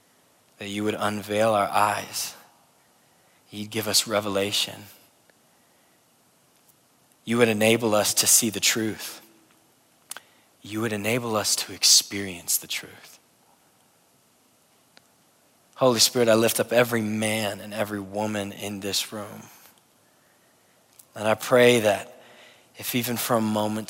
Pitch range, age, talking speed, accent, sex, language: 100-110 Hz, 20-39, 120 wpm, American, male, English